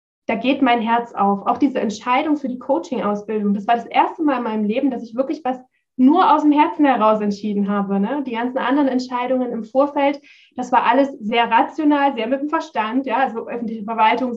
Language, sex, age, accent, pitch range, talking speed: German, female, 20-39, German, 230-275 Hz, 210 wpm